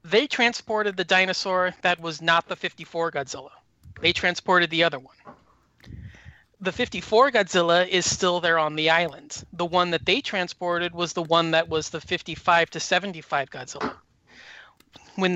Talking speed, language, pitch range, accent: 155 wpm, English, 160-185 Hz, American